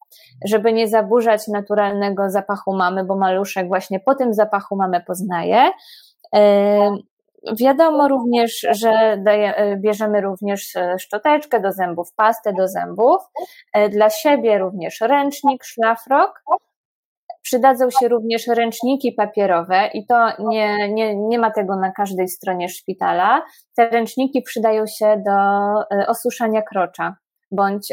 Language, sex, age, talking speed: Polish, female, 20-39, 115 wpm